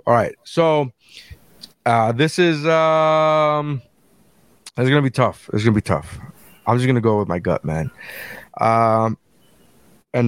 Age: 20-39